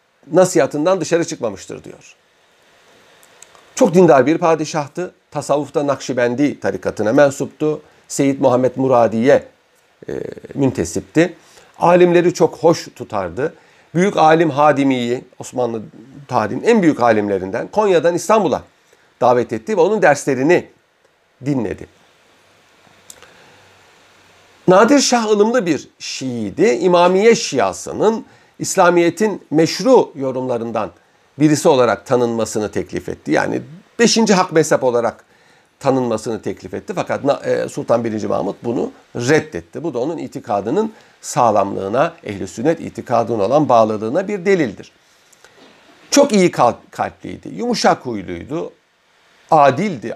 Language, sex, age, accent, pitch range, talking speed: Turkish, male, 50-69, native, 125-185 Hz, 100 wpm